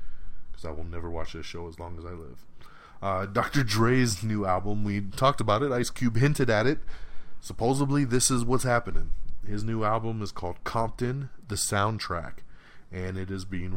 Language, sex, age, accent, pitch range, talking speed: English, male, 30-49, American, 85-105 Hz, 185 wpm